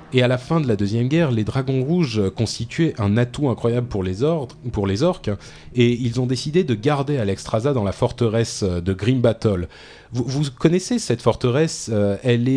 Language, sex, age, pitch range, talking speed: French, male, 30-49, 100-130 Hz, 185 wpm